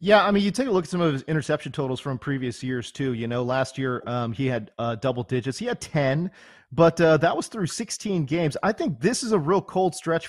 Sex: male